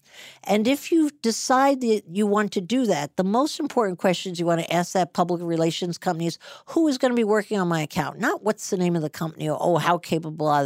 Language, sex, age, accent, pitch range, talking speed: English, female, 50-69, American, 165-220 Hz, 250 wpm